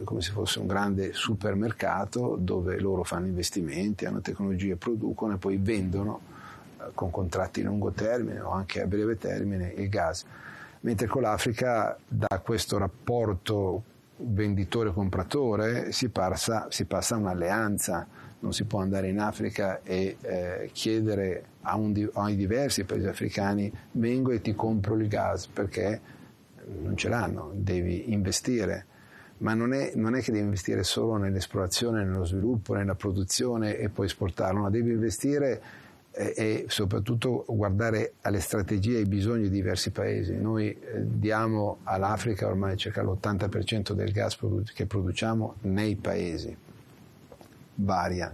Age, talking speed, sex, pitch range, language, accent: 40-59, 135 wpm, male, 95-110 Hz, Italian, native